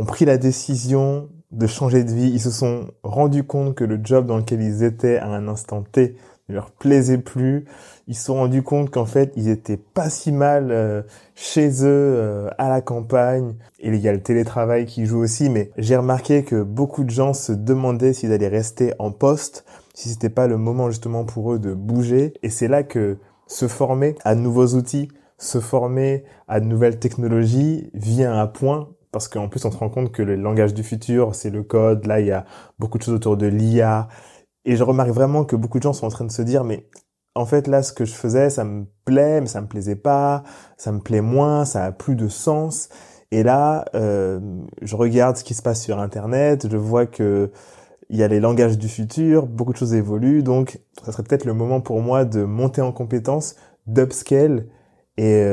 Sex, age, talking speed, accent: male, 20-39, 220 wpm, French